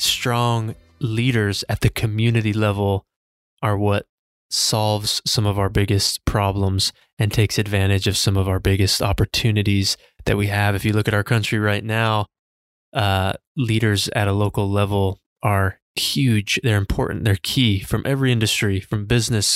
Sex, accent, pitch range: male, American, 100-115 Hz